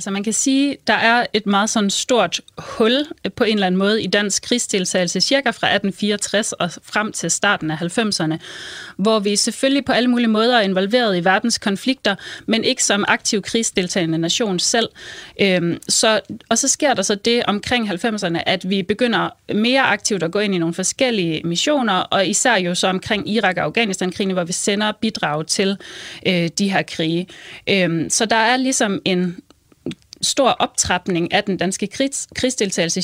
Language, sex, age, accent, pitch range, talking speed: Danish, female, 30-49, native, 185-235 Hz, 175 wpm